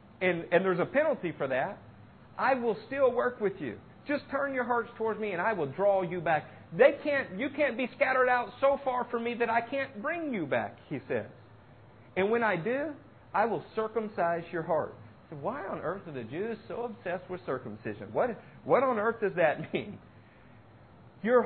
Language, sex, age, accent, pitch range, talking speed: English, male, 50-69, American, 140-230 Hz, 200 wpm